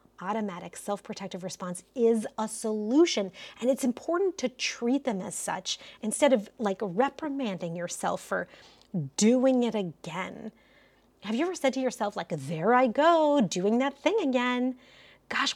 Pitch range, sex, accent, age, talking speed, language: 195-265 Hz, female, American, 30-49, 145 wpm, English